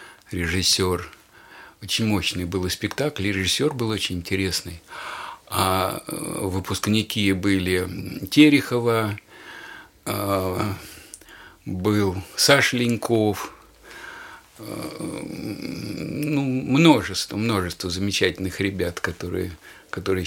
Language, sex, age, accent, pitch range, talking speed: Russian, male, 50-69, native, 90-115 Hz, 70 wpm